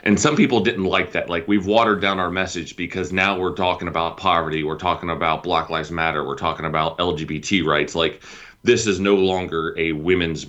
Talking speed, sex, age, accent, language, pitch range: 205 wpm, male, 30-49, American, English, 90-125 Hz